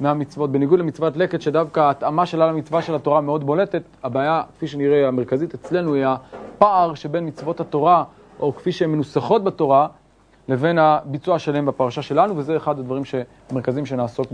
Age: 30-49